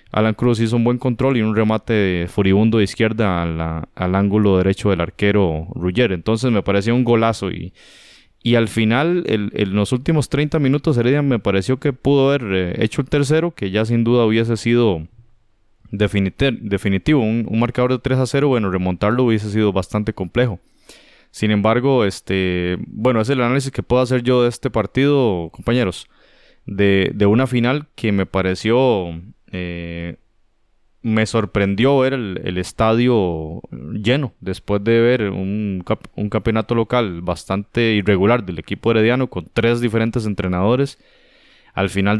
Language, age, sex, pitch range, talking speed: Spanish, 20-39, male, 95-120 Hz, 160 wpm